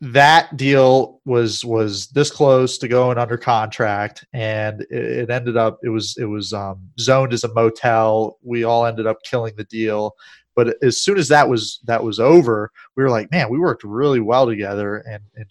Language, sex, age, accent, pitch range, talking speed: English, male, 30-49, American, 110-130 Hz, 195 wpm